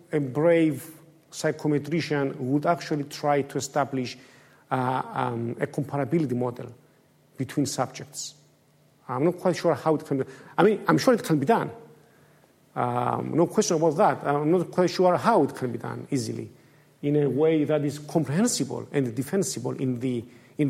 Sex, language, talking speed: male, English, 165 wpm